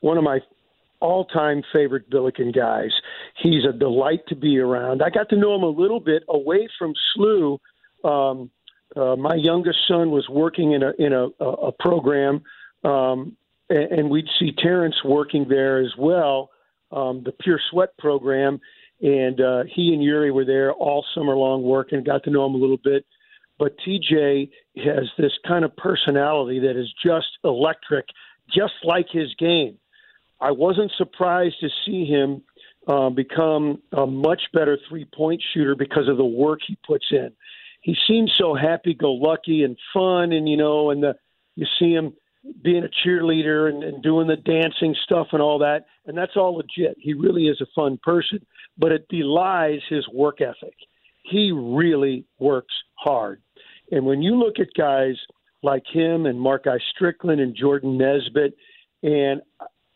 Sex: male